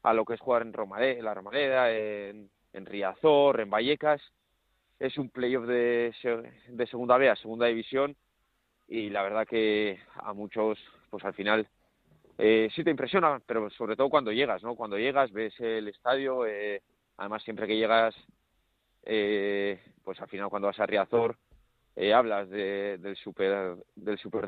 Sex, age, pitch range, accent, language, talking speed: male, 30-49, 105-130 Hz, Spanish, Spanish, 165 wpm